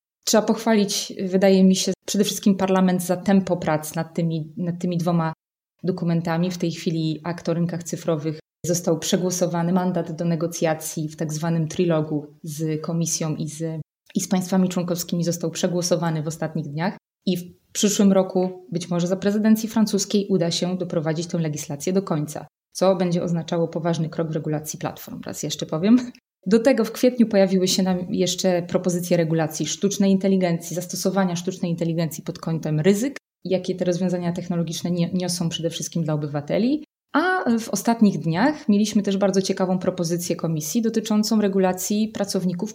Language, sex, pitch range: Polish, female, 170-195 Hz